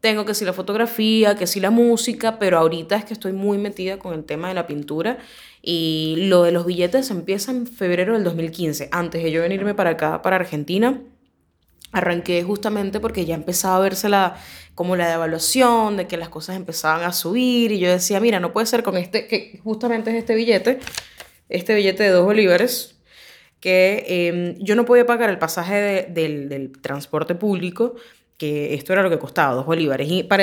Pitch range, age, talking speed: 165-220 Hz, 10-29, 200 wpm